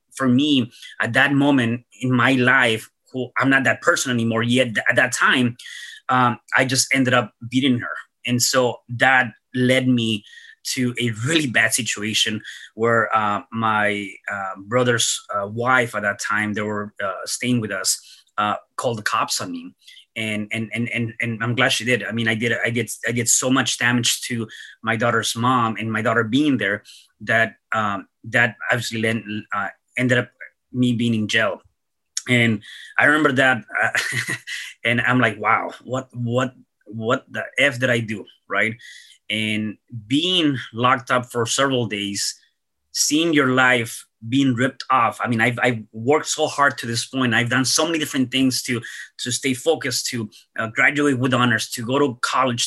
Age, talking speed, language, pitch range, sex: 30-49, 180 wpm, English, 115-130 Hz, male